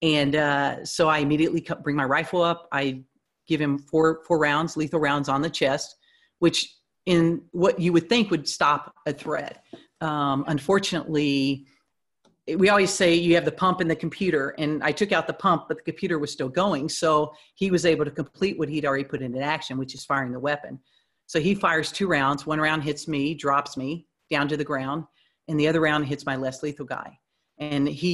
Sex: female